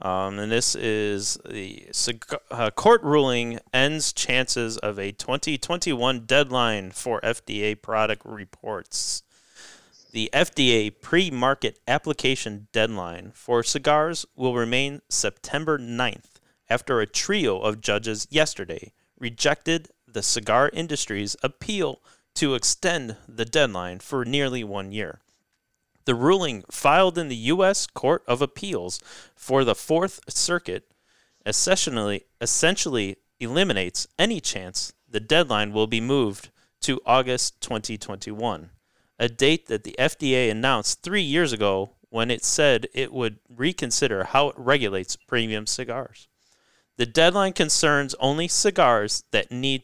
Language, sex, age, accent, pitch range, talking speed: English, male, 30-49, American, 110-145 Hz, 120 wpm